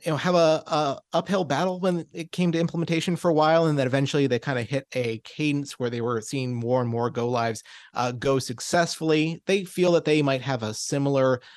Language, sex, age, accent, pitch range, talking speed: English, male, 30-49, American, 120-150 Hz, 230 wpm